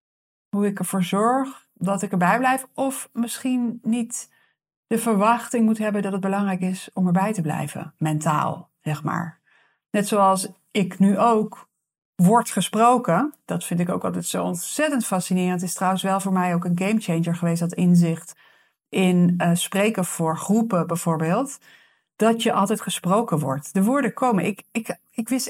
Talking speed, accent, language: 160 wpm, Dutch, Dutch